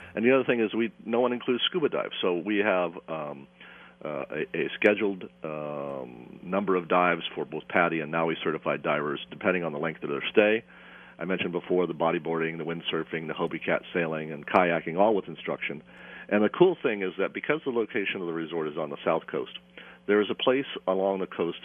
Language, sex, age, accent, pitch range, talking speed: English, male, 50-69, American, 80-100 Hz, 215 wpm